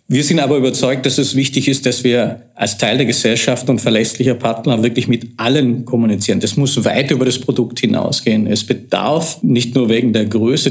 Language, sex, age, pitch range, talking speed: German, male, 50-69, 115-130 Hz, 195 wpm